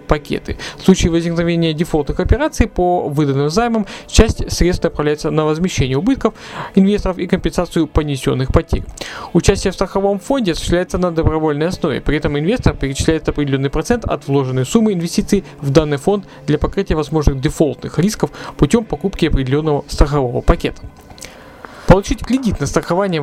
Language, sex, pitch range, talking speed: Russian, male, 145-185 Hz, 140 wpm